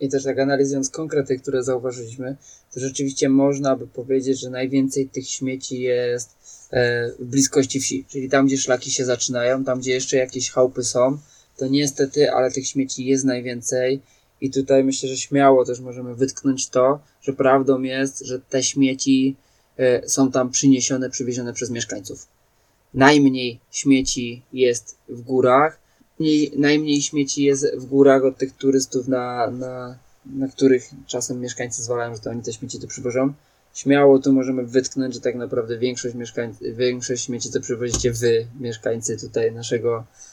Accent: native